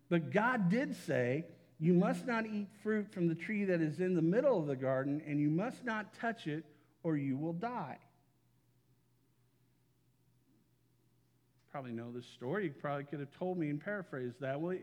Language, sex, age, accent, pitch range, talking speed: English, male, 50-69, American, 135-175 Hz, 180 wpm